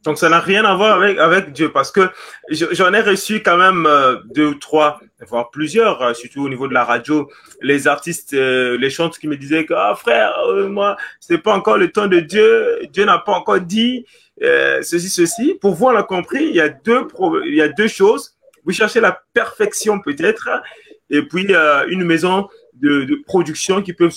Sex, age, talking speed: male, 30-49, 195 wpm